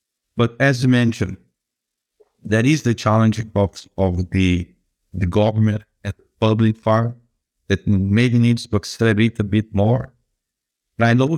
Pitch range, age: 100-120 Hz, 60-79